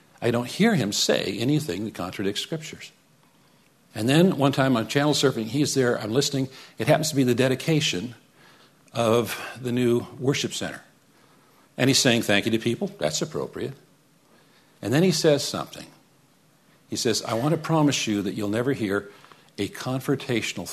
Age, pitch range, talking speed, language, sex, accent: 50-69, 115-150 Hz, 170 wpm, English, male, American